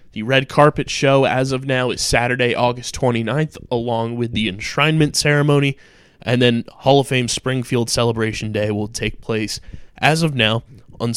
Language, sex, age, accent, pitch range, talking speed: English, male, 20-39, American, 110-135 Hz, 165 wpm